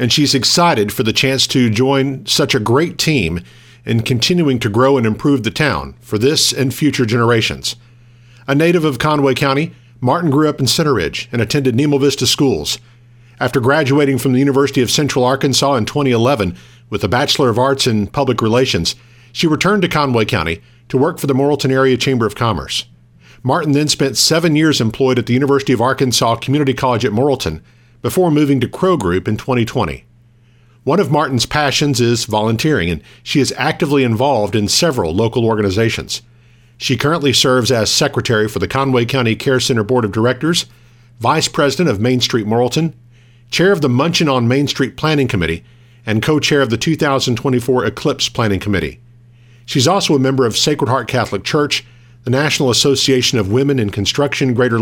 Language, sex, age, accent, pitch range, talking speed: English, male, 50-69, American, 120-140 Hz, 180 wpm